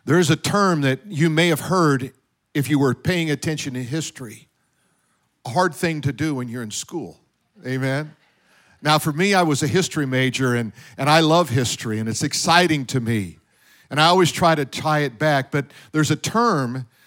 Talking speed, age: 195 wpm, 50-69